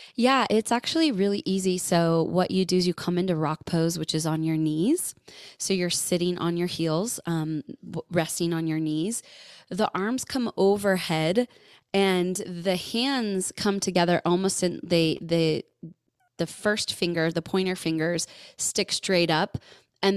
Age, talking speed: 20-39, 160 wpm